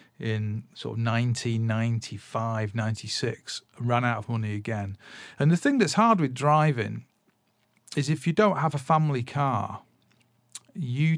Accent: British